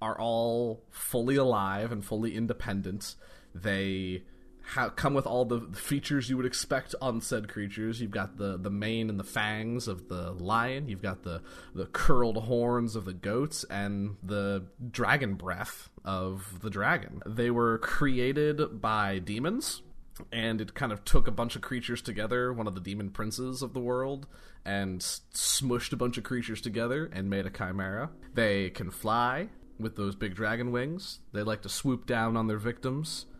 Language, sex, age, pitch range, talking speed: English, male, 30-49, 100-125 Hz, 170 wpm